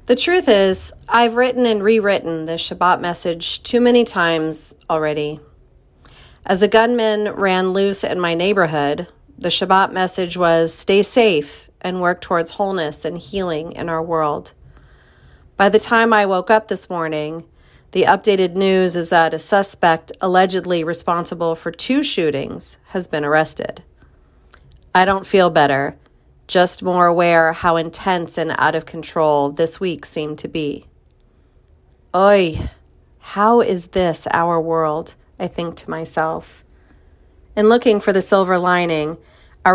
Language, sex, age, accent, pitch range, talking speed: English, female, 40-59, American, 155-190 Hz, 145 wpm